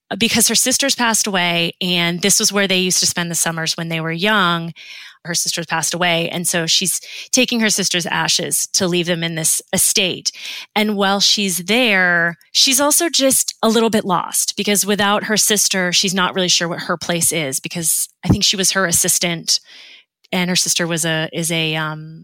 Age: 30-49